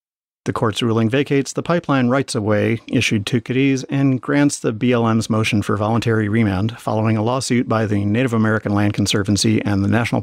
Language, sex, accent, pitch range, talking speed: English, male, American, 105-125 Hz, 190 wpm